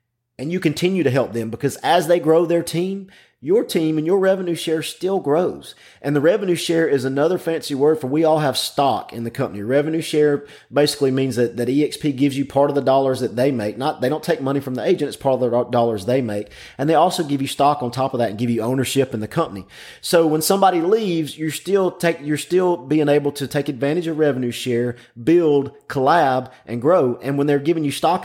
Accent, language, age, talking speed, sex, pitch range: American, English, 30-49, 235 wpm, male, 125-160 Hz